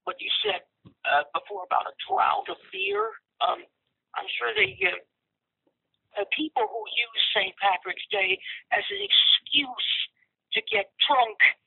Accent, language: American, English